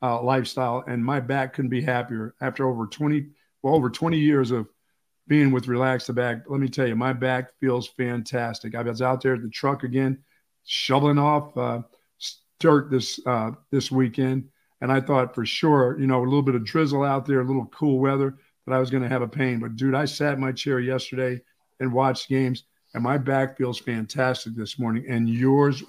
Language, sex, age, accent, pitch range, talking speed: English, male, 50-69, American, 125-140 Hz, 210 wpm